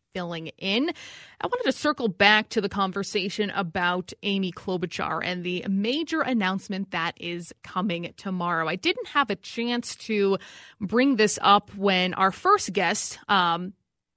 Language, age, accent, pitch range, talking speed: English, 20-39, American, 185-225 Hz, 150 wpm